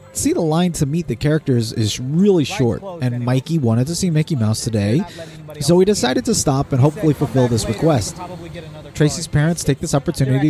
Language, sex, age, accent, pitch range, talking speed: English, male, 30-49, American, 120-150 Hz, 190 wpm